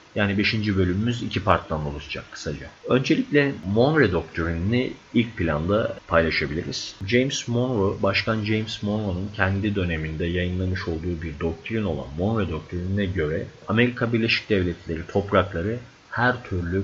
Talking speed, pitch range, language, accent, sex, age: 120 wpm, 90-110 Hz, Turkish, native, male, 30-49